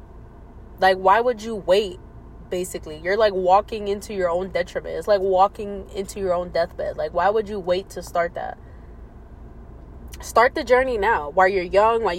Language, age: English, 20-39